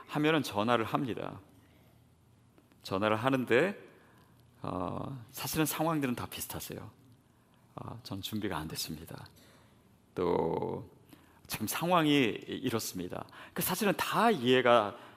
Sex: male